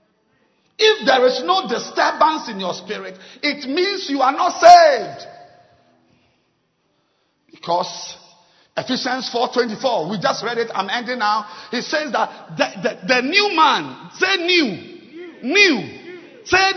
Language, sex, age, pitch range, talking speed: English, male, 50-69, 200-315 Hz, 130 wpm